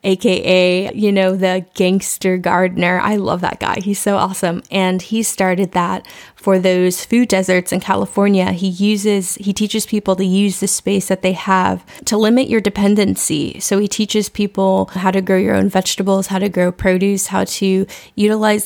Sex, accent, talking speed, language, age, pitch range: female, American, 180 wpm, English, 20-39, 190-210 Hz